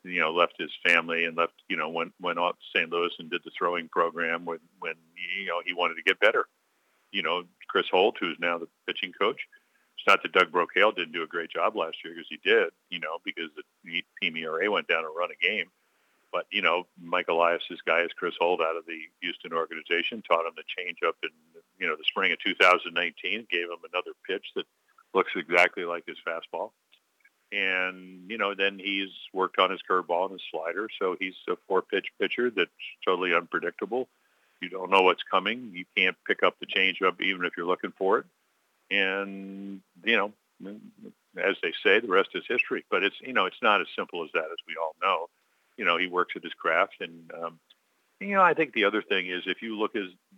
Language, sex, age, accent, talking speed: English, male, 50-69, American, 215 wpm